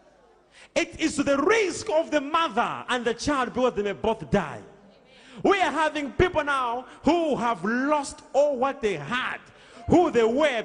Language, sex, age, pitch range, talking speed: English, male, 40-59, 185-300 Hz, 175 wpm